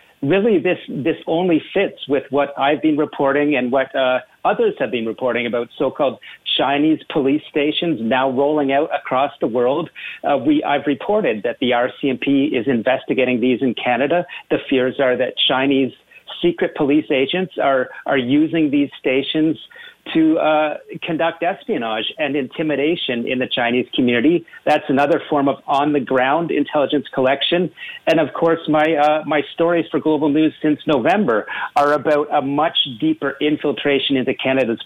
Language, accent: English, American